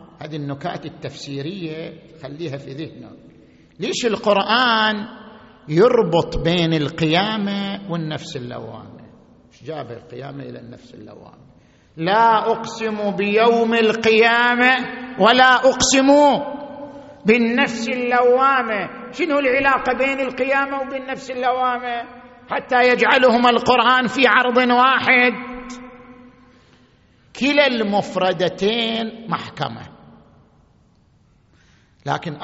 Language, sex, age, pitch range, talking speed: Arabic, male, 50-69, 145-235 Hz, 80 wpm